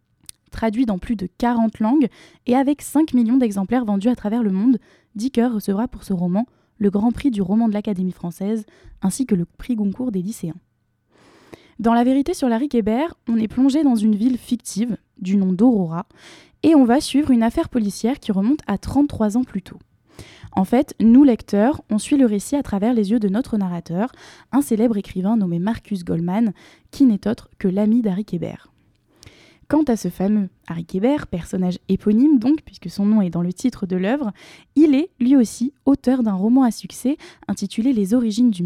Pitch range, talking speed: 200-250 Hz, 190 wpm